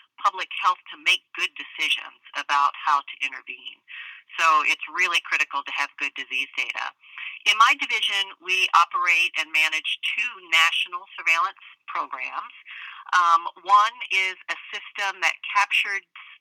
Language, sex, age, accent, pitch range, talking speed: English, female, 40-59, American, 150-185 Hz, 135 wpm